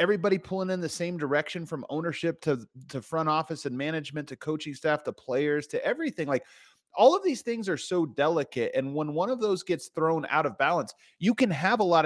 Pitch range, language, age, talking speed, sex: 135-170 Hz, English, 30-49, 220 wpm, male